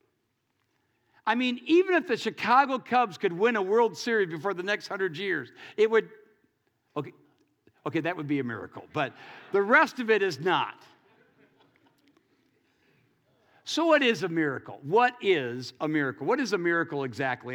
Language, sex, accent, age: English, male, American, 60-79